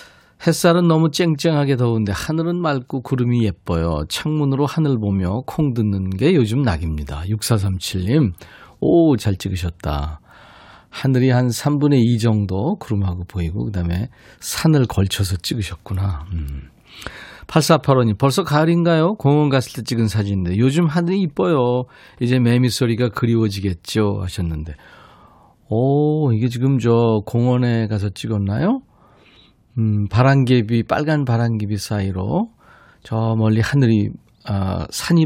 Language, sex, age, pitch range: Korean, male, 40-59, 100-140 Hz